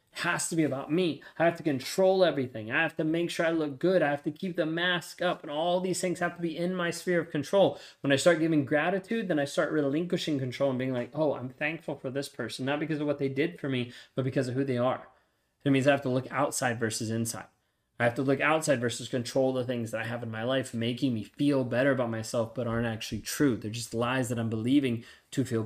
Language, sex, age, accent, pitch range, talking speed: English, male, 20-39, American, 120-155 Hz, 260 wpm